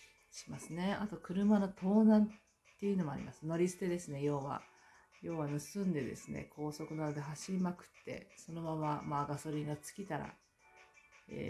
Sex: female